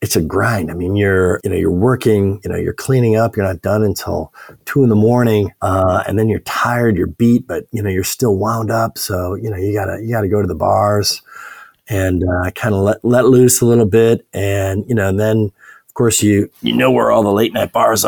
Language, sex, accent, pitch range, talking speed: English, male, American, 95-115 Hz, 240 wpm